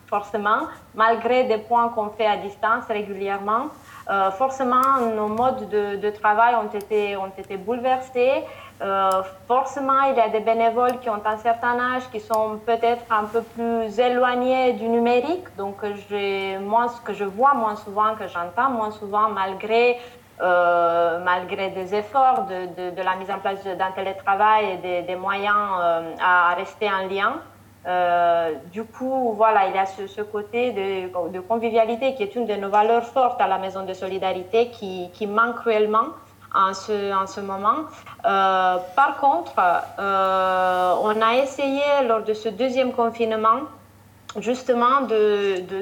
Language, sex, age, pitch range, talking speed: French, female, 20-39, 195-245 Hz, 165 wpm